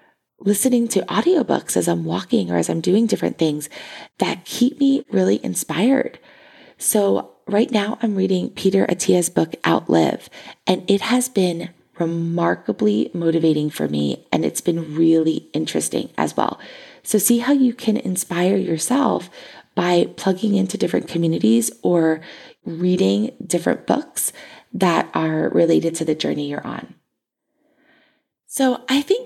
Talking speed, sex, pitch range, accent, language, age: 140 wpm, female, 165-230 Hz, American, English, 20-39